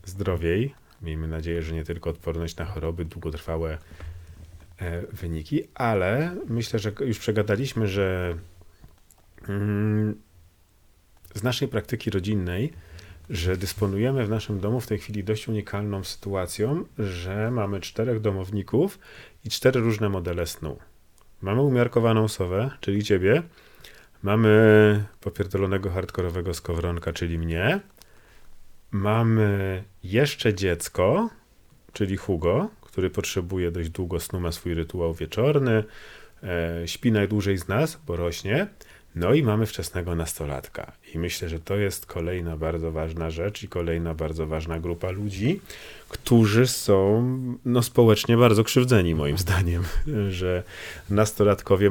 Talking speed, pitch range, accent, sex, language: 115 wpm, 85-110 Hz, native, male, Polish